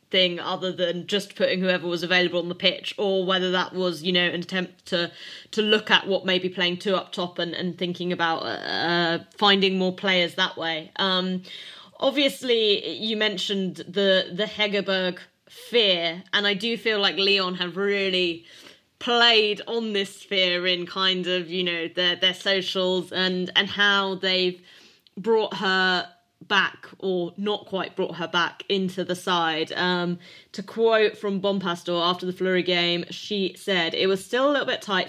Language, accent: English, British